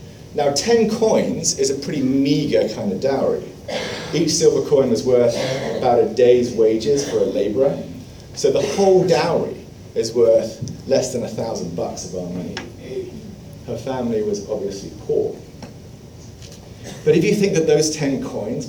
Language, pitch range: English, 120-195 Hz